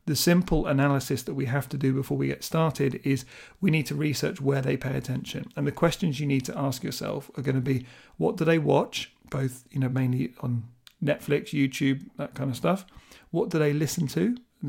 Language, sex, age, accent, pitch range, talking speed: English, male, 40-59, British, 135-155 Hz, 220 wpm